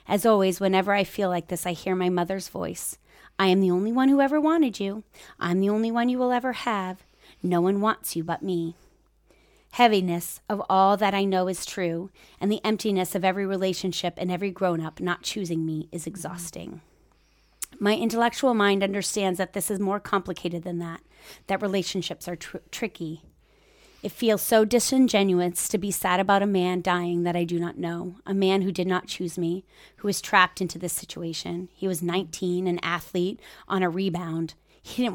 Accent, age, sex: American, 30-49, female